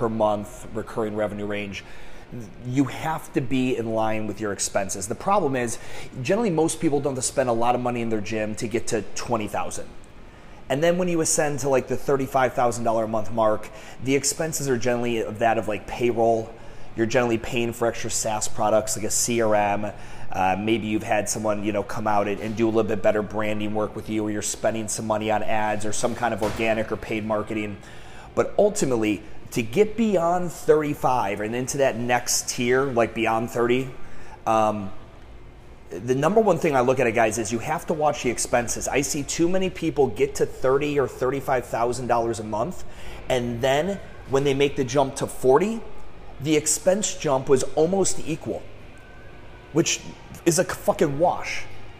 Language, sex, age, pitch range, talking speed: English, male, 30-49, 110-140 Hz, 185 wpm